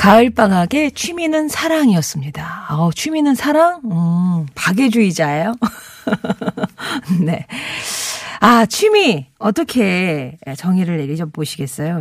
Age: 40-59